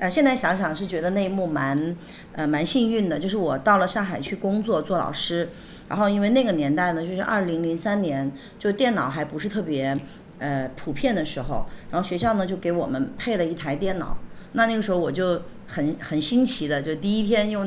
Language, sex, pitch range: Chinese, female, 160-220 Hz